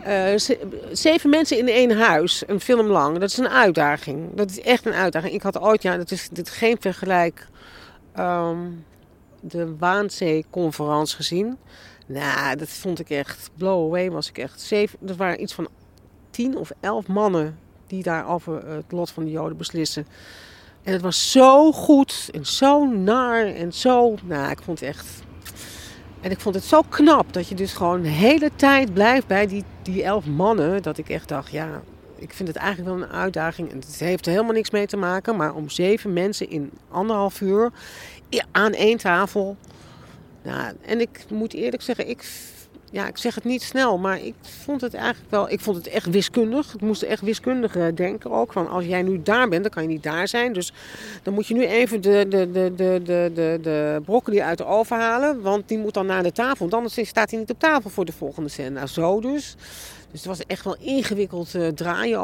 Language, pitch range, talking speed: Dutch, 170-225 Hz, 205 wpm